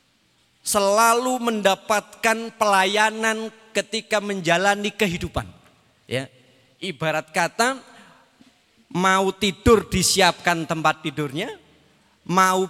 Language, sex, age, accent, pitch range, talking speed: Indonesian, male, 40-59, native, 160-210 Hz, 70 wpm